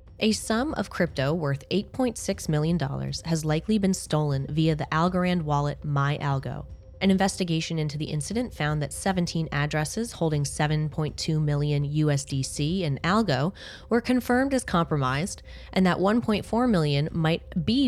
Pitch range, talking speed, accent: 145-195 Hz, 140 wpm, American